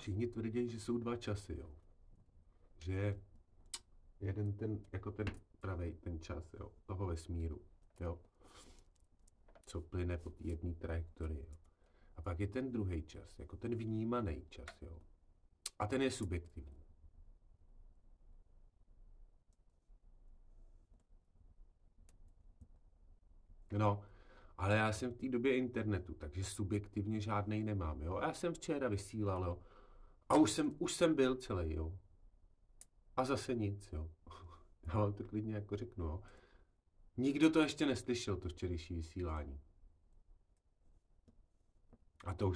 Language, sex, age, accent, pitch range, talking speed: Czech, male, 40-59, native, 80-105 Hz, 120 wpm